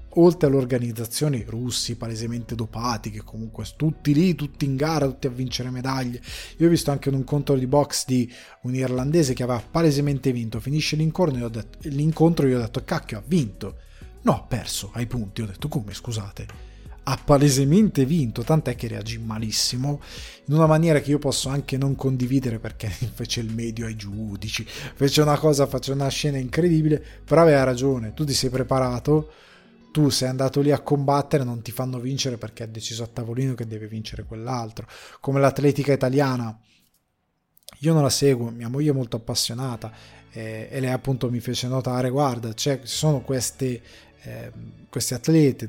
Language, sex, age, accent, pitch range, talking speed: Italian, male, 20-39, native, 115-145 Hz, 170 wpm